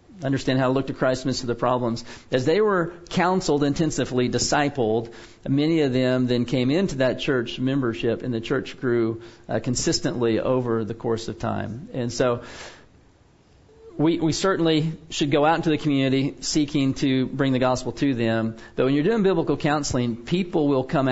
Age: 40-59